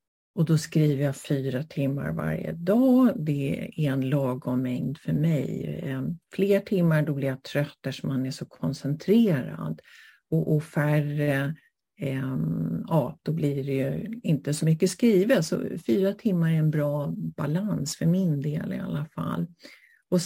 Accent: native